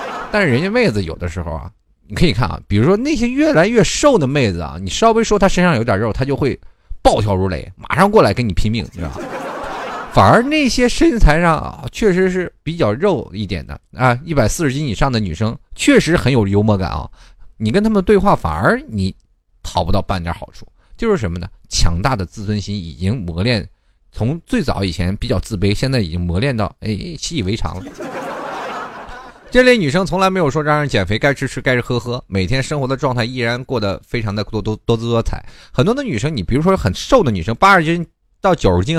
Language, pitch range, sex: Chinese, 100-160 Hz, male